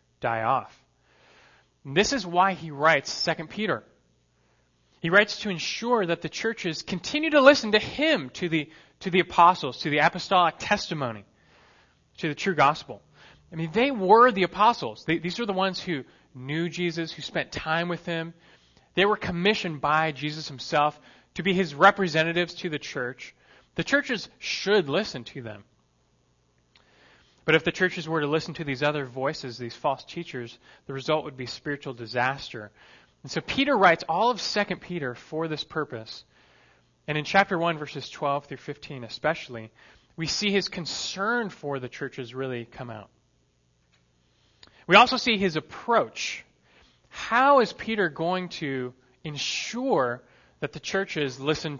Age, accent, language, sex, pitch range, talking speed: 30-49, American, English, male, 125-185 Hz, 155 wpm